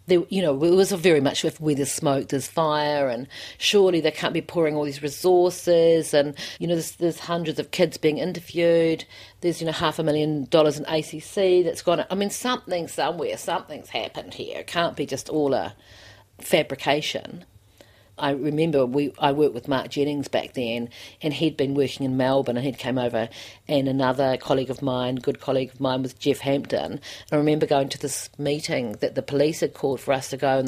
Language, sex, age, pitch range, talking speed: English, female, 40-59, 135-180 Hz, 205 wpm